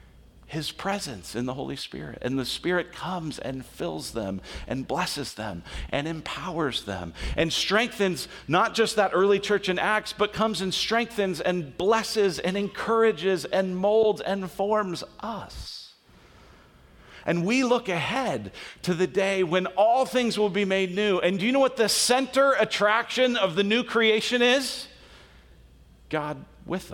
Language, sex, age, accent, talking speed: English, male, 40-59, American, 155 wpm